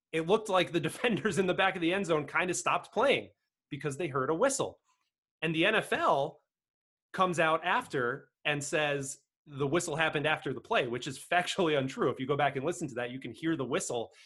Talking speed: 220 wpm